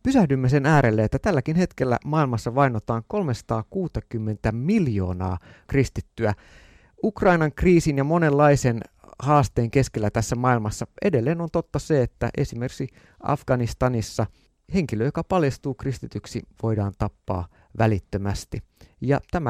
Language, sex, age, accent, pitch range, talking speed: Finnish, male, 30-49, native, 110-145 Hz, 110 wpm